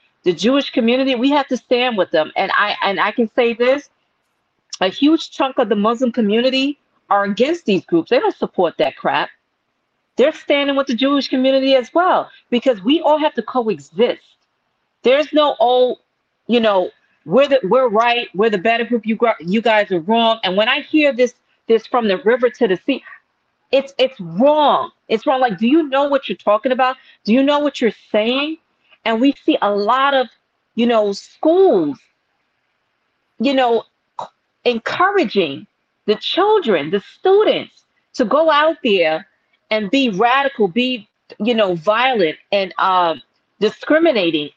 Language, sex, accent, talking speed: English, female, American, 170 wpm